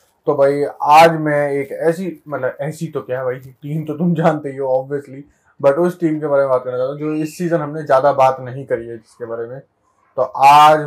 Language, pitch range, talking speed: Hindi, 140-165 Hz, 225 wpm